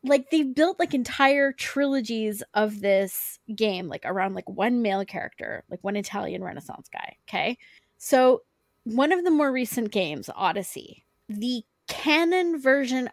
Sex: female